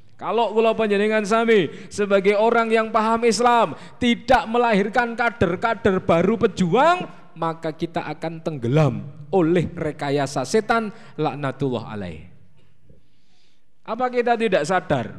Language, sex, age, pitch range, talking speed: Indonesian, male, 20-39, 155-220 Hz, 105 wpm